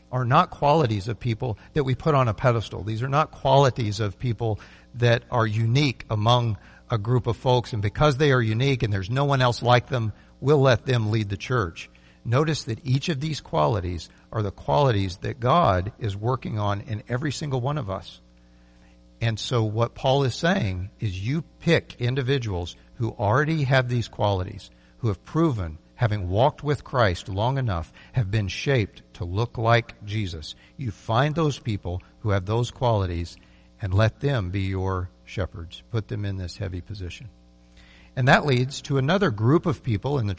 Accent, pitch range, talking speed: American, 100-130 Hz, 185 wpm